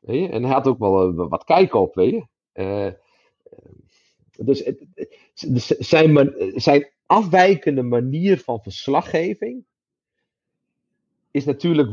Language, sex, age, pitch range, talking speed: Dutch, male, 40-59, 120-155 Hz, 110 wpm